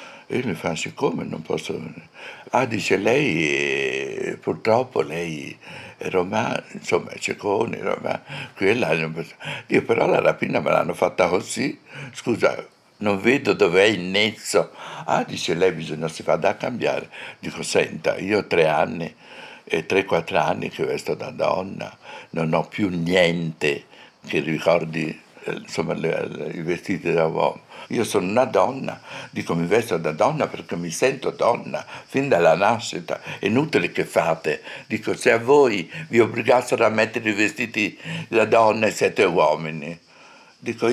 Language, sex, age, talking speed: Italian, male, 60-79, 150 wpm